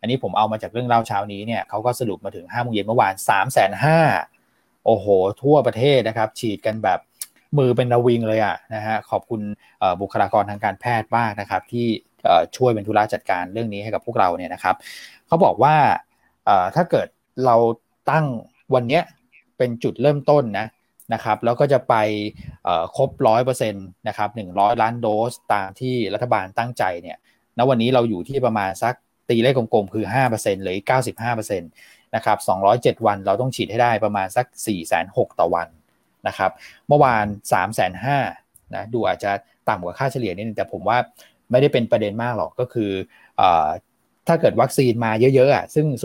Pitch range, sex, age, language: 105-125 Hz, male, 20-39, Thai